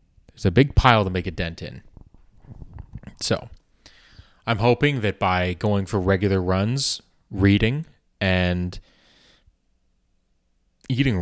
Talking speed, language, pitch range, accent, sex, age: 110 wpm, English, 90-110 Hz, American, male, 20-39